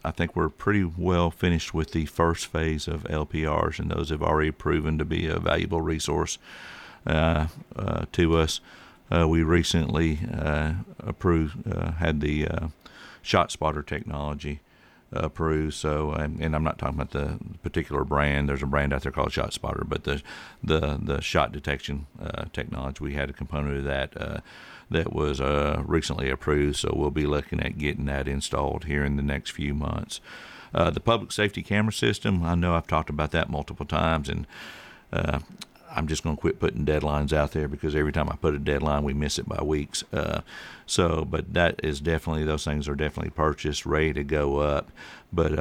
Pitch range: 75-80 Hz